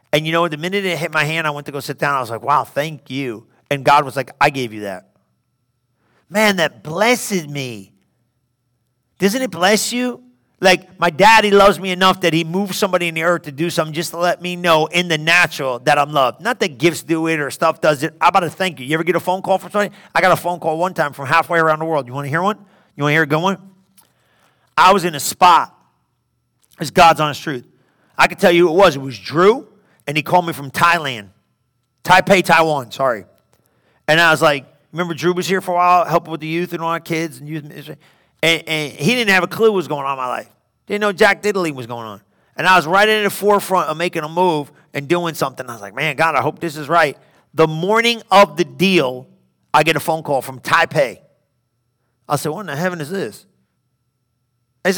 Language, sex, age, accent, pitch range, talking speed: English, male, 40-59, American, 145-185 Hz, 245 wpm